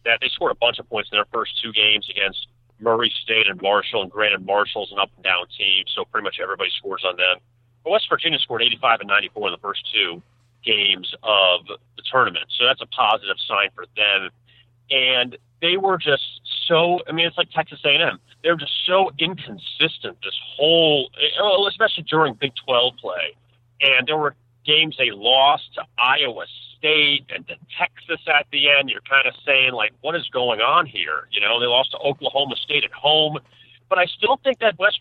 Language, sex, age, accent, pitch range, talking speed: English, male, 40-59, American, 120-155 Hz, 200 wpm